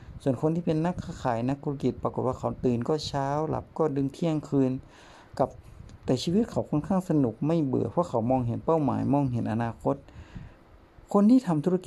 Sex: male